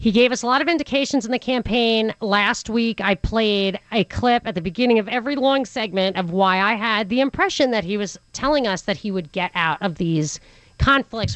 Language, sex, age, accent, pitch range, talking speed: English, female, 40-59, American, 210-275 Hz, 220 wpm